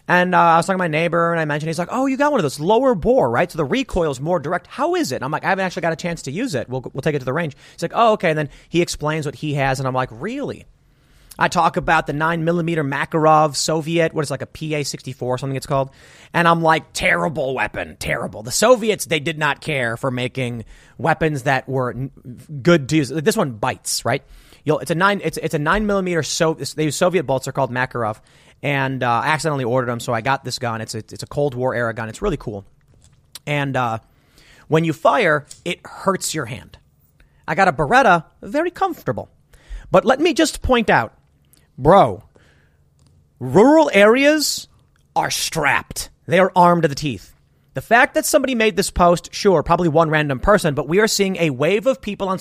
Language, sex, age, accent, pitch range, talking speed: English, male, 30-49, American, 135-175 Hz, 220 wpm